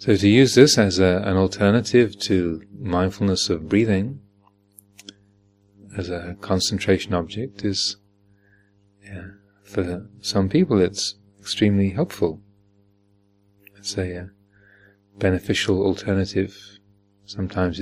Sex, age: male, 30-49